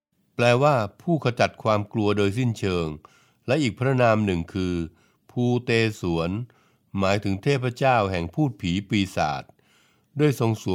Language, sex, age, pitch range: Thai, male, 60-79, 100-130 Hz